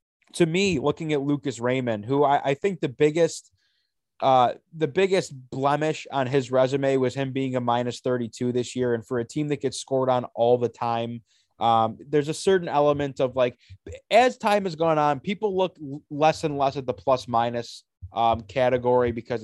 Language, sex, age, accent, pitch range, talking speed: English, male, 20-39, American, 125-155 Hz, 190 wpm